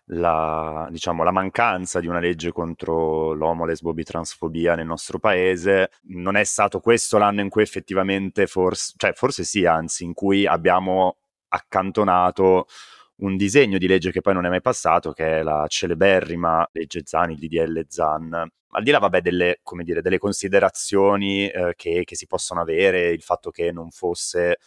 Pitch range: 85-95 Hz